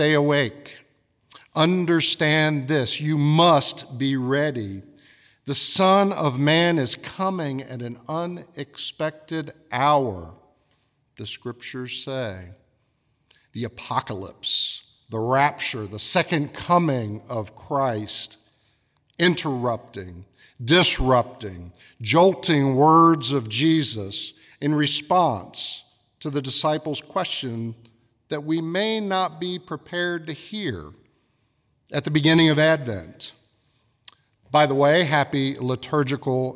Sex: male